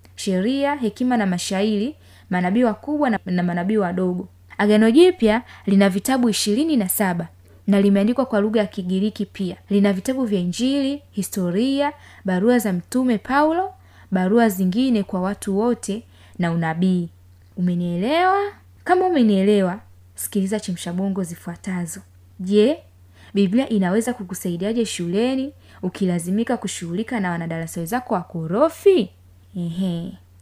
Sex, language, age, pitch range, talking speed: female, Swahili, 20-39, 180-240 Hz, 115 wpm